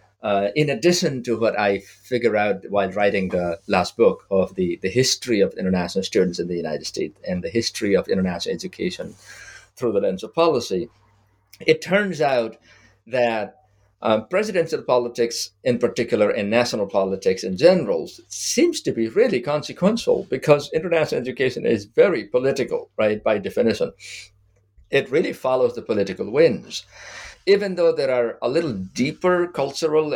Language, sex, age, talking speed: English, male, 50-69, 155 wpm